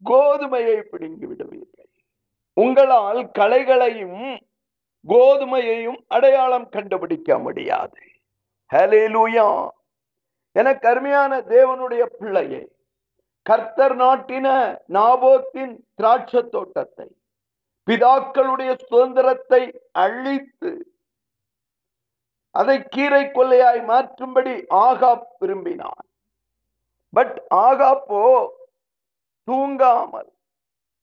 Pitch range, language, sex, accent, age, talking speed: 225-275 Hz, Tamil, male, native, 50-69, 45 wpm